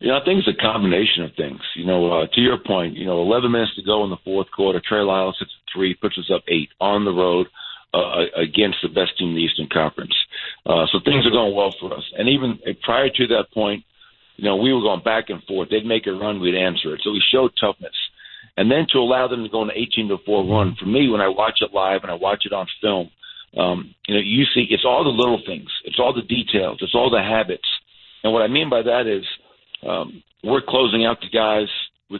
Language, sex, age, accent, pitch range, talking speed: English, male, 50-69, American, 95-120 Hz, 250 wpm